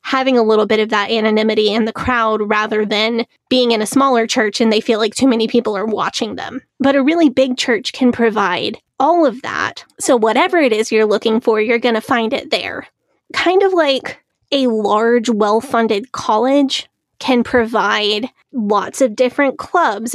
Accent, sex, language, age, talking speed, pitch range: American, female, English, 20-39, 190 wpm, 220-250 Hz